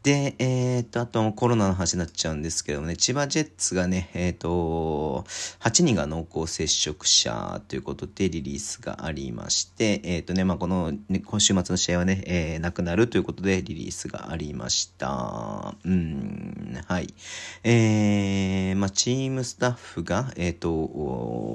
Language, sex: Japanese, male